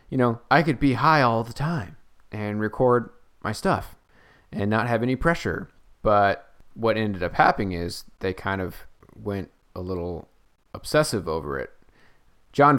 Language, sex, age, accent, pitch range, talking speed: English, male, 30-49, American, 85-120 Hz, 160 wpm